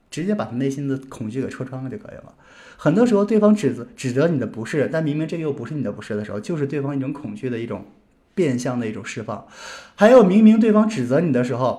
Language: Chinese